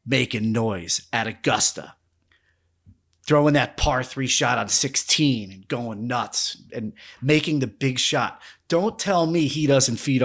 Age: 30-49